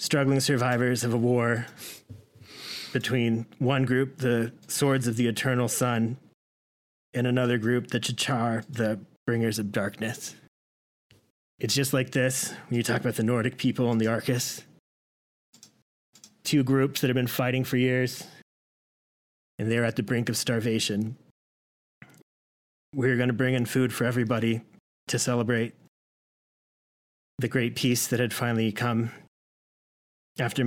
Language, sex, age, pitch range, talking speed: English, male, 30-49, 115-130 Hz, 135 wpm